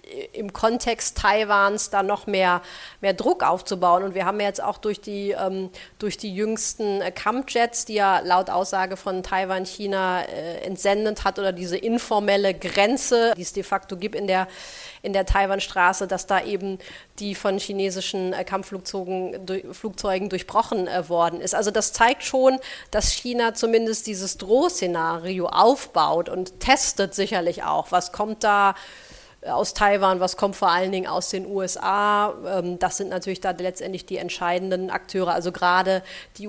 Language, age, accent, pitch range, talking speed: English, 30-49, German, 185-215 Hz, 160 wpm